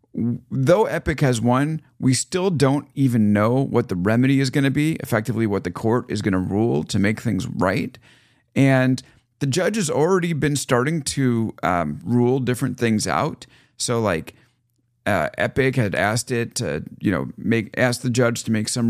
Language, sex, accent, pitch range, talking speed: English, male, American, 100-130 Hz, 185 wpm